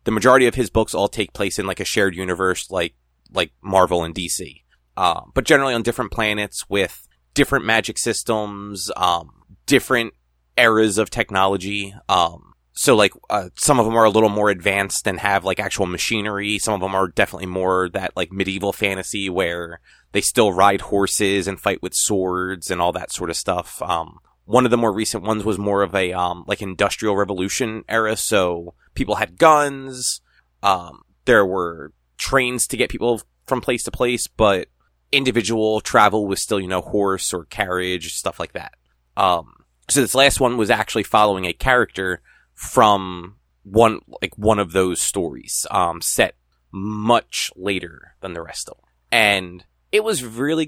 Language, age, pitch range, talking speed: English, 30-49, 95-115 Hz, 180 wpm